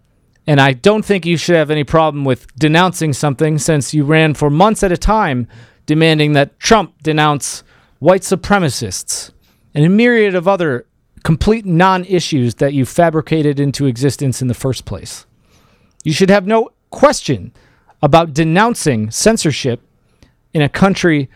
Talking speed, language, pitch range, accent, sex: 150 wpm, English, 125-165 Hz, American, male